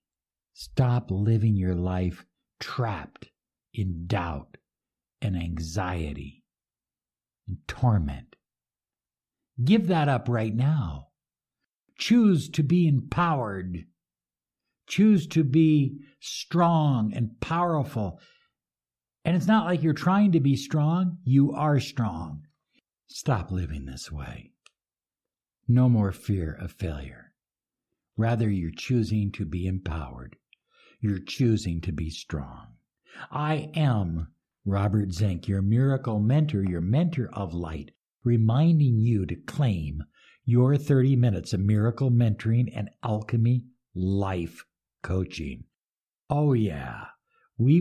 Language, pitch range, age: English, 90-135 Hz, 60-79